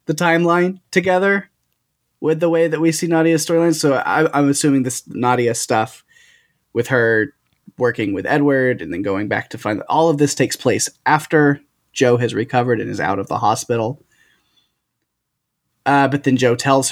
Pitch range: 125-155 Hz